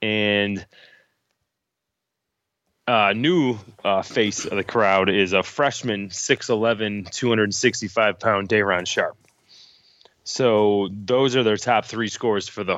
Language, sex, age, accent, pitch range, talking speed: English, male, 20-39, American, 100-115 Hz, 115 wpm